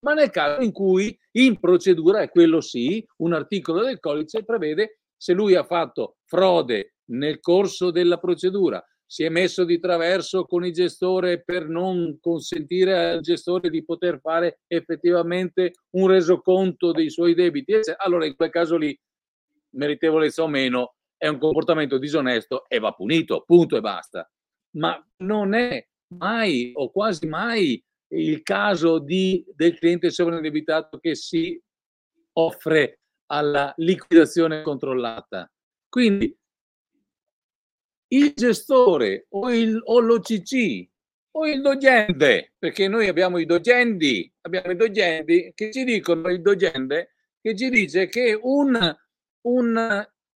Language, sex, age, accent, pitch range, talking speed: Italian, male, 50-69, native, 170-240 Hz, 135 wpm